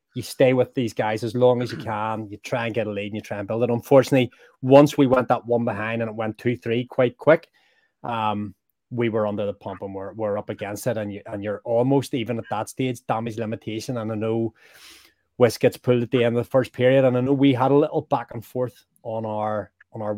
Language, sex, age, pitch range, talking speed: English, male, 20-39, 105-125 Hz, 255 wpm